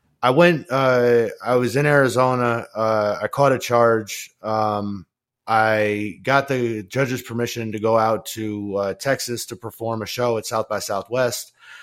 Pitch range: 100-125 Hz